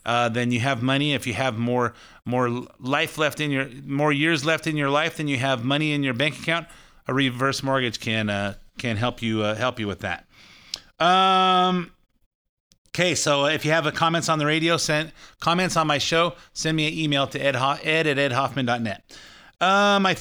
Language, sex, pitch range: English, male, 125-165 Hz